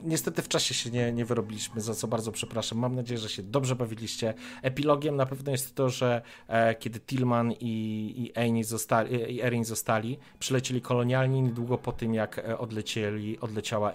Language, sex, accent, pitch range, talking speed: Polish, male, native, 105-125 Hz, 170 wpm